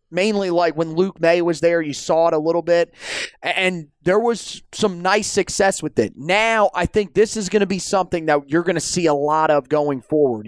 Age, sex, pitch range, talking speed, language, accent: 30-49, male, 150-180 Hz, 230 wpm, English, American